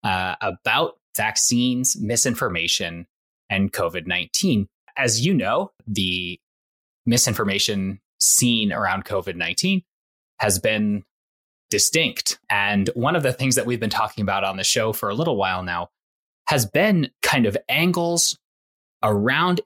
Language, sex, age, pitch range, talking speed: English, male, 20-39, 100-130 Hz, 125 wpm